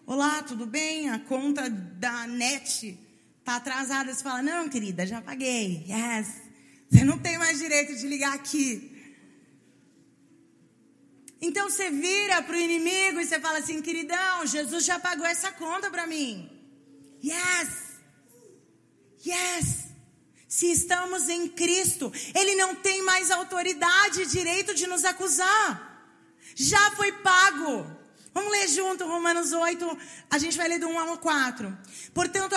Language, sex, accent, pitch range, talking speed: Portuguese, female, Brazilian, 275-360 Hz, 140 wpm